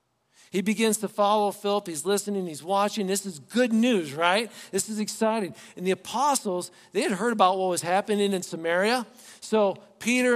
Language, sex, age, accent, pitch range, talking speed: English, male, 50-69, American, 160-215 Hz, 180 wpm